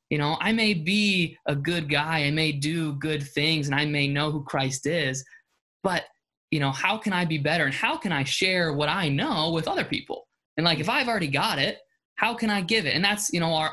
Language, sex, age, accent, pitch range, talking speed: English, male, 20-39, American, 140-170 Hz, 245 wpm